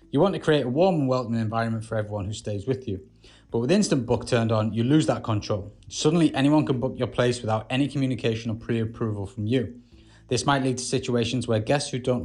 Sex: male